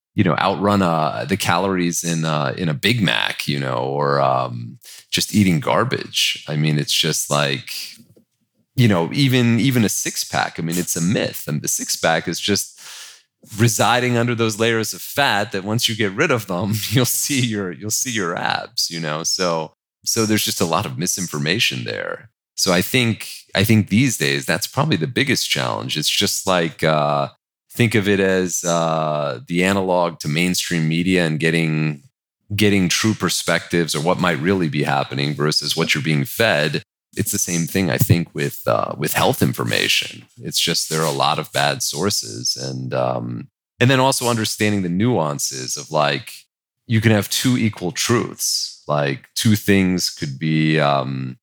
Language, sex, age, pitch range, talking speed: English, male, 30-49, 75-110 Hz, 185 wpm